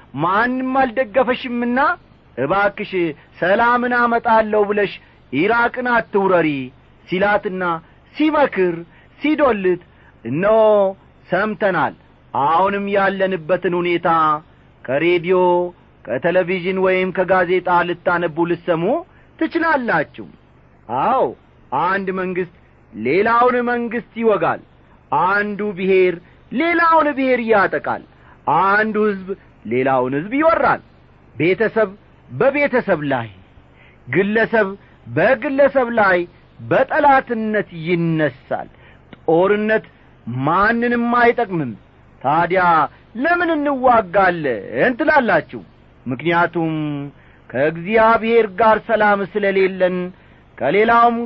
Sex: male